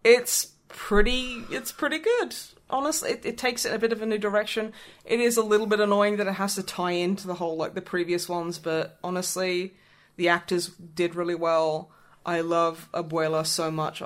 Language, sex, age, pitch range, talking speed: English, female, 20-39, 160-205 Hz, 195 wpm